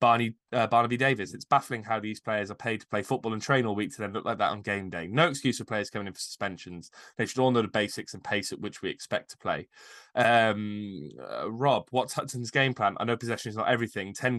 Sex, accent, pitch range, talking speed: male, British, 105-125 Hz, 260 wpm